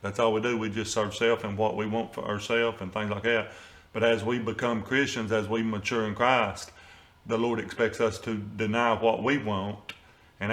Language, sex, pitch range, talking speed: English, male, 110-130 Hz, 215 wpm